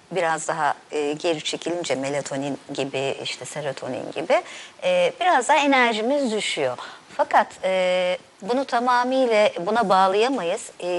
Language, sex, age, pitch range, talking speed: Turkish, male, 50-69, 160-235 Hz, 120 wpm